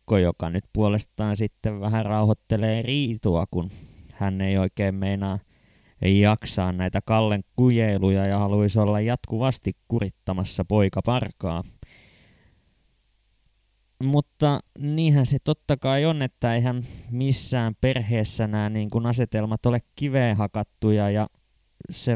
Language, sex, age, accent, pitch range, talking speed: Finnish, male, 20-39, native, 105-130 Hz, 115 wpm